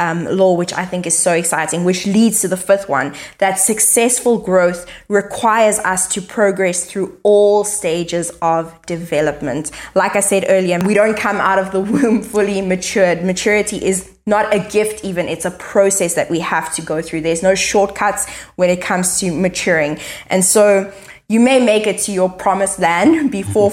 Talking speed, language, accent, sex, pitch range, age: 185 wpm, English, South African, female, 180-205 Hz, 20-39